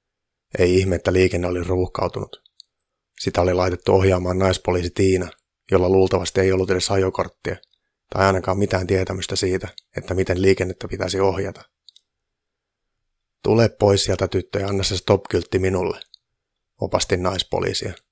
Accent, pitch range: native, 90-95 Hz